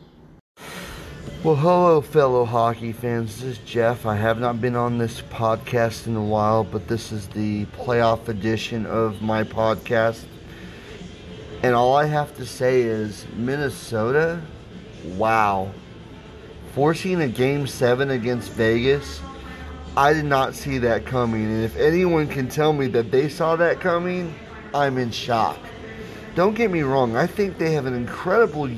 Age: 30-49